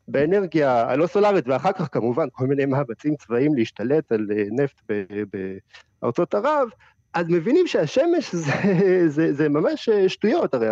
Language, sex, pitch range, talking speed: Hebrew, male, 115-160 Hz, 140 wpm